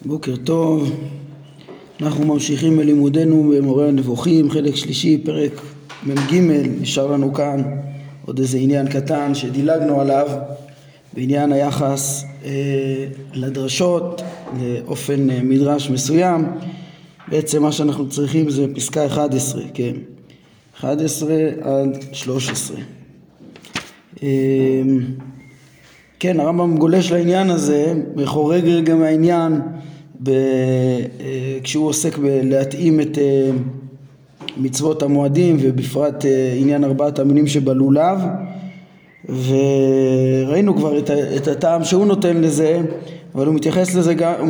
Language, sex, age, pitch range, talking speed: Hebrew, male, 20-39, 140-165 Hz, 95 wpm